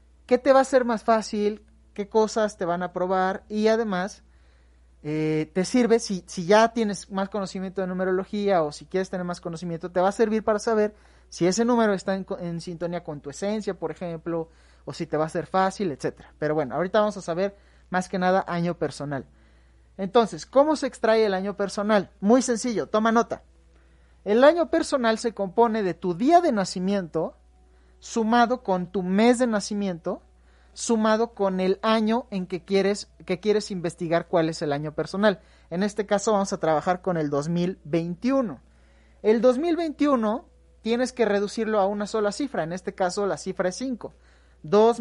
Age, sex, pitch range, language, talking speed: 30-49, male, 170-220 Hz, Spanish, 185 wpm